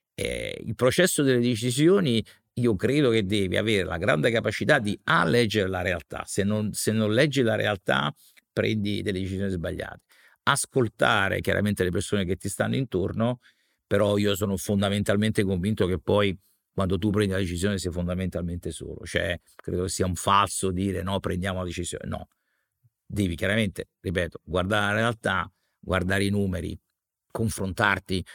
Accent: native